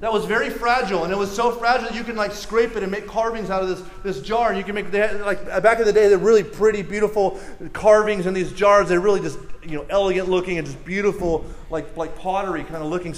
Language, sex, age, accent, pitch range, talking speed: English, male, 30-49, American, 175-230 Hz, 255 wpm